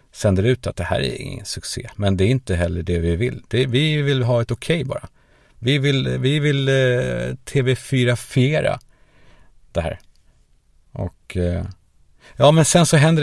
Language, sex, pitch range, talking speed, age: Swedish, male, 90-130 Hz, 185 wpm, 50-69